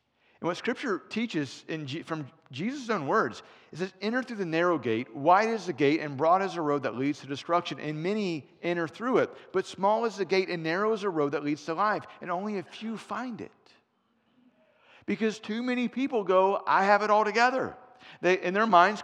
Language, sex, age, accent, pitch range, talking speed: English, male, 50-69, American, 145-195 Hz, 210 wpm